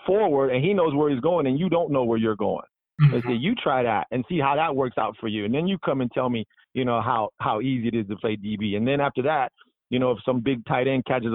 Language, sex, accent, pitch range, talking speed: English, male, American, 115-140 Hz, 290 wpm